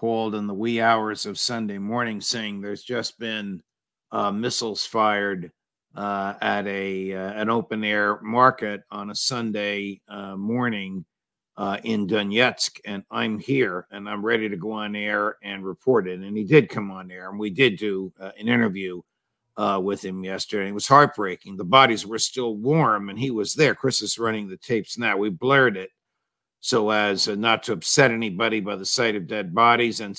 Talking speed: 190 wpm